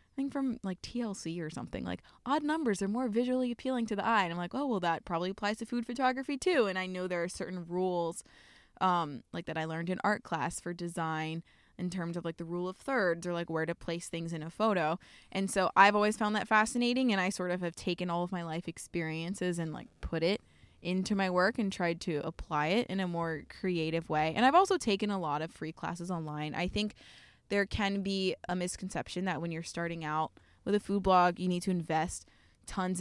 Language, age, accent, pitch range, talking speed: English, 20-39, American, 170-205 Hz, 235 wpm